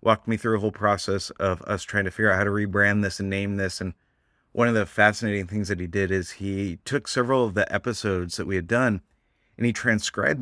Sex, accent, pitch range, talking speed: male, American, 95-115 Hz, 240 wpm